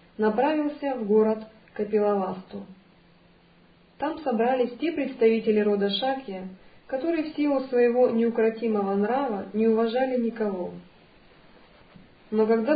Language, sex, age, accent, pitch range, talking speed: Russian, female, 40-59, native, 205-260 Hz, 100 wpm